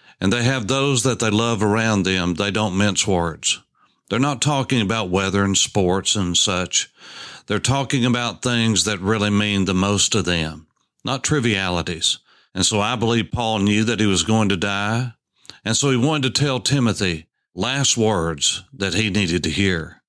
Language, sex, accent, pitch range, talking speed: English, male, American, 100-135 Hz, 180 wpm